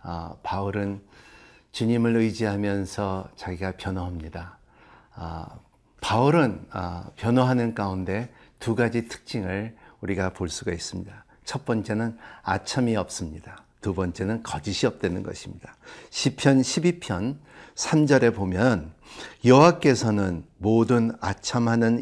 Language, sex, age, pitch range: Korean, male, 50-69, 100-130 Hz